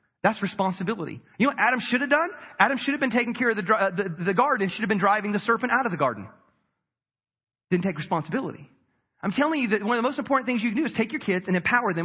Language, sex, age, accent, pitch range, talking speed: English, male, 40-59, American, 185-255 Hz, 270 wpm